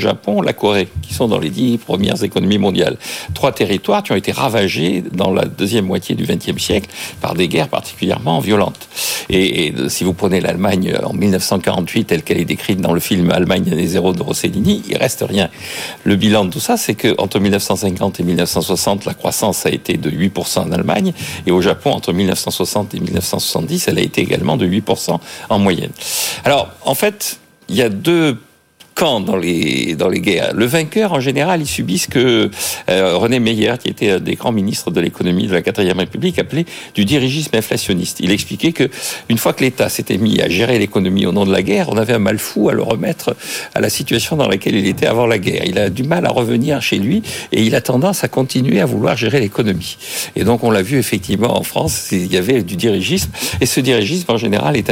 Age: 50-69